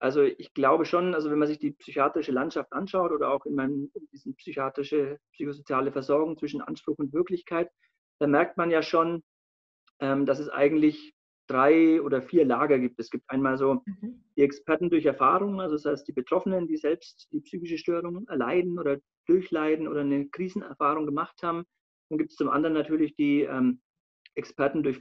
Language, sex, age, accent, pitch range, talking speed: German, male, 40-59, German, 140-175 Hz, 180 wpm